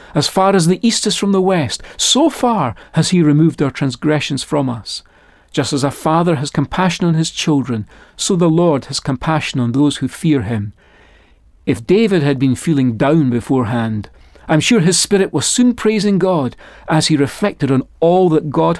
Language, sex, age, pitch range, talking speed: English, male, 40-59, 135-185 Hz, 190 wpm